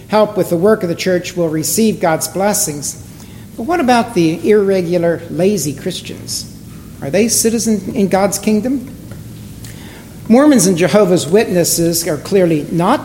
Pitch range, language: 165-235 Hz, English